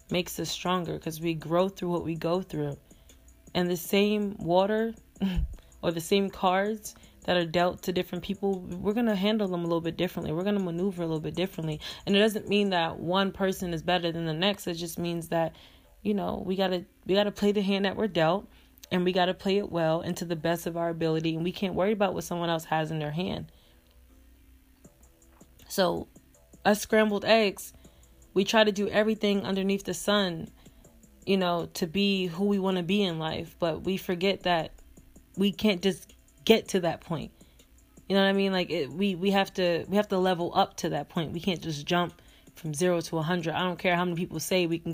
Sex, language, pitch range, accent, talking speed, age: female, English, 165-200 Hz, American, 220 wpm, 20-39